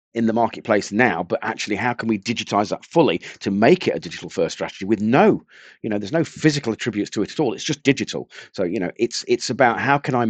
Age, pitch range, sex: 40-59, 95-130 Hz, male